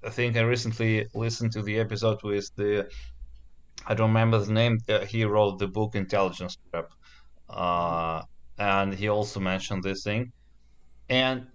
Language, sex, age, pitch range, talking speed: Russian, male, 30-49, 95-115 Hz, 150 wpm